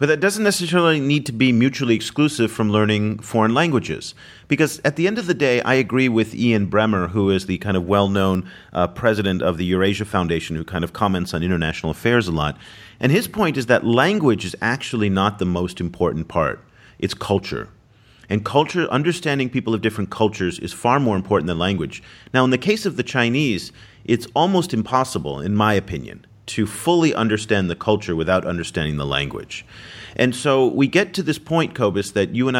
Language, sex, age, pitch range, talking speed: English, male, 40-59, 95-130 Hz, 195 wpm